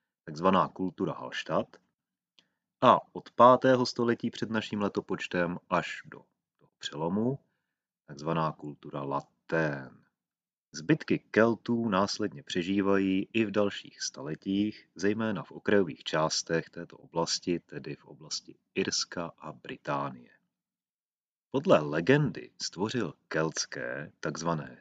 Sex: male